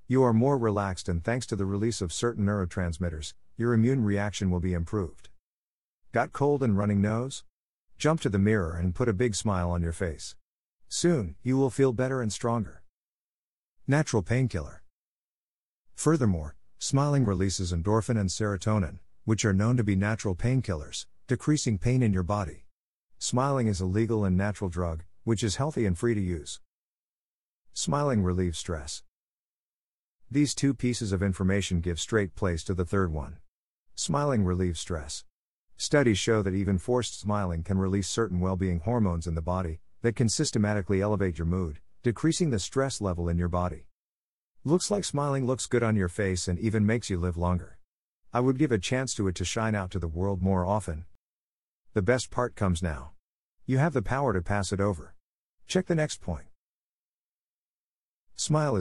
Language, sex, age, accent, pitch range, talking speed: English, male, 50-69, American, 90-120 Hz, 170 wpm